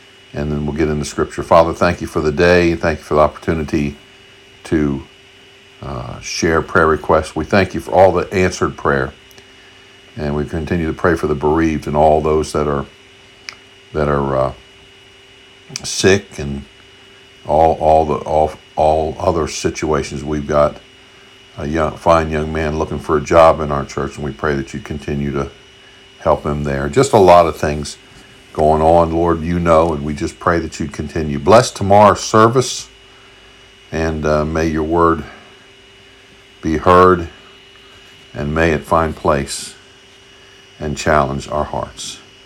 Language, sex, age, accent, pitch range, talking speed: English, male, 60-79, American, 75-95 Hz, 165 wpm